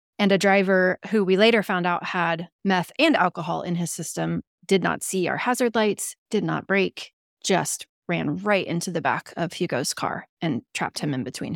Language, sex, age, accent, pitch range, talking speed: English, female, 30-49, American, 180-225 Hz, 195 wpm